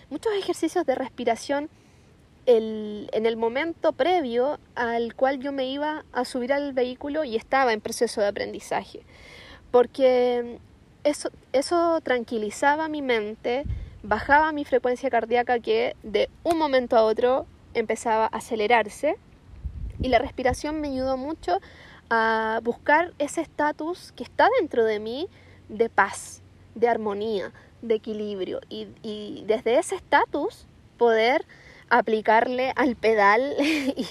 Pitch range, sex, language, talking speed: 225-290 Hz, female, Spanish, 130 wpm